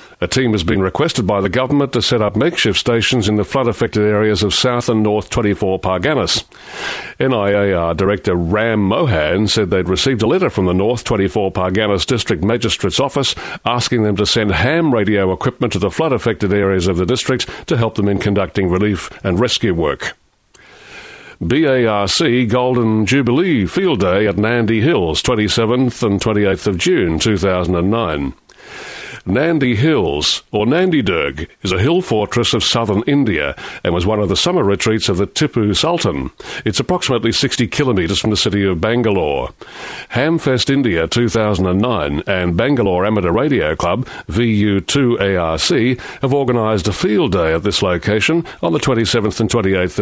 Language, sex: English, male